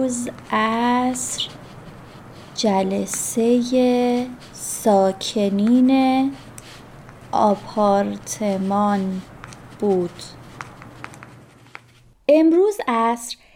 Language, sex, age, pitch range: Persian, female, 30-49, 200-270 Hz